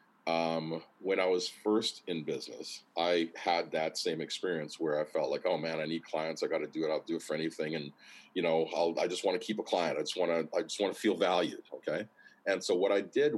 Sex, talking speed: male, 260 wpm